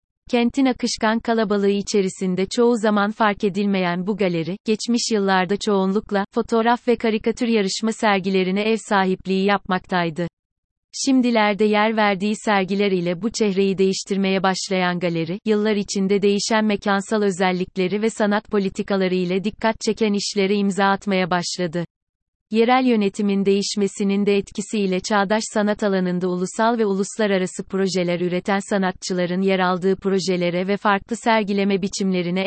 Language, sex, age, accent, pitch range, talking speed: Turkish, female, 30-49, native, 190-215 Hz, 125 wpm